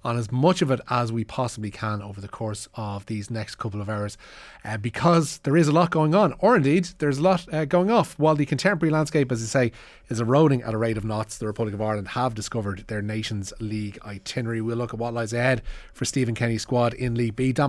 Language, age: English, 30-49